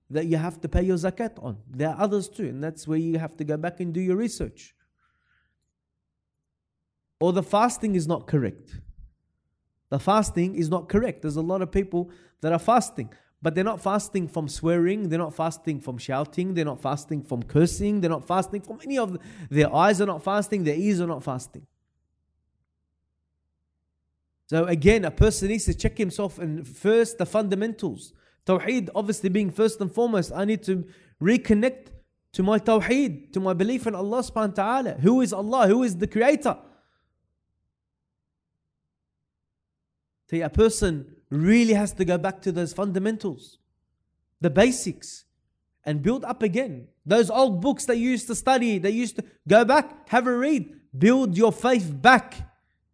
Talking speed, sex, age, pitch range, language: 175 wpm, male, 20-39, 145-215 Hz, English